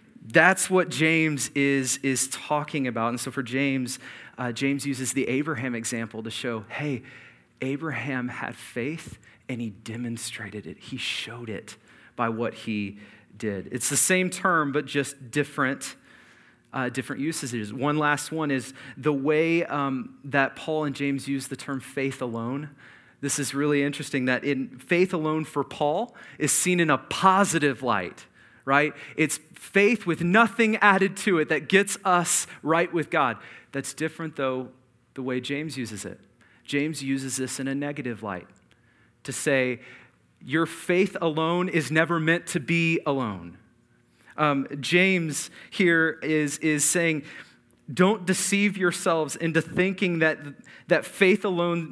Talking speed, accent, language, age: 150 wpm, American, English, 30-49